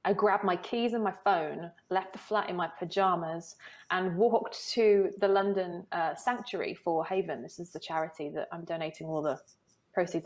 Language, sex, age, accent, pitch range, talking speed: English, female, 20-39, British, 180-220 Hz, 185 wpm